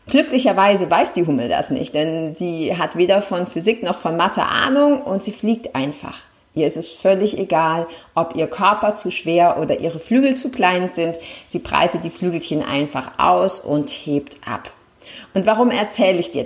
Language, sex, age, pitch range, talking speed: German, female, 40-59, 165-205 Hz, 180 wpm